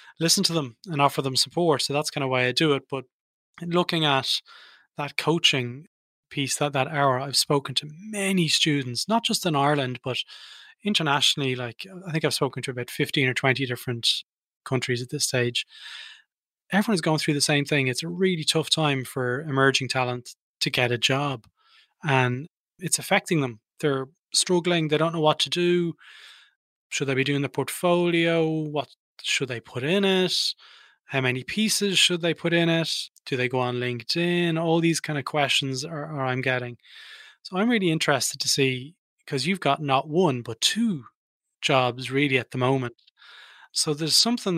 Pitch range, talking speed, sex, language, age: 130-170 Hz, 180 wpm, male, English, 20-39